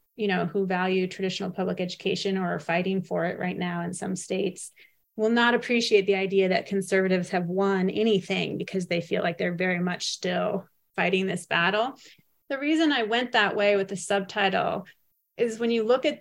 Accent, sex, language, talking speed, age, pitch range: American, female, English, 195 wpm, 30-49, 190-225 Hz